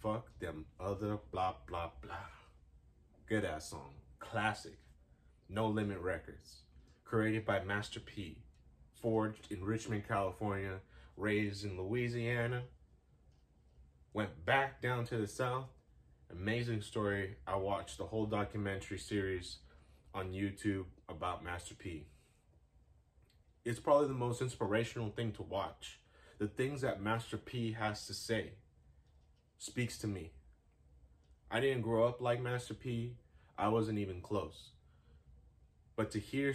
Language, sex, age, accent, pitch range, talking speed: English, male, 30-49, American, 80-115 Hz, 125 wpm